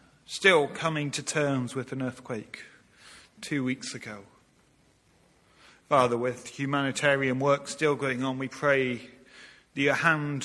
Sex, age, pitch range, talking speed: male, 40-59, 115-135 Hz, 125 wpm